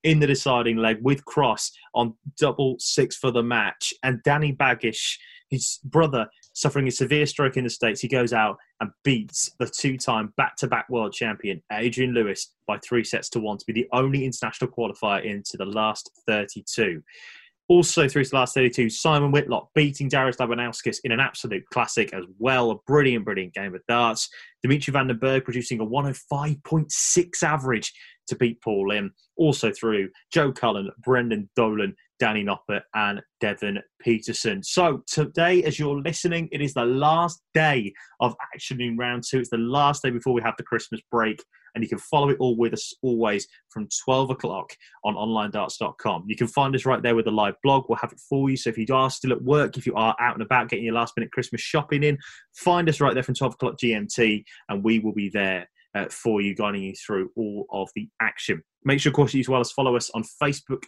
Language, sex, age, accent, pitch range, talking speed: English, male, 20-39, British, 110-140 Hz, 200 wpm